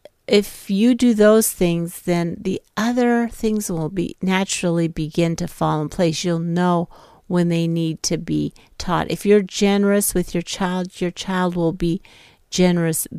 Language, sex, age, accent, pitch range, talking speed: English, female, 50-69, American, 170-205 Hz, 165 wpm